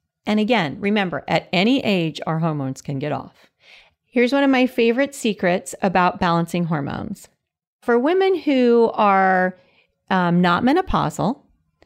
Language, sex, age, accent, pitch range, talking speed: English, female, 40-59, American, 180-235 Hz, 135 wpm